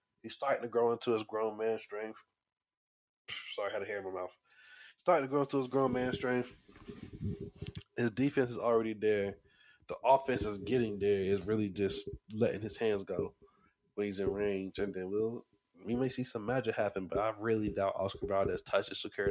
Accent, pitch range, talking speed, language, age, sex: American, 100-125 Hz, 200 wpm, English, 20-39, male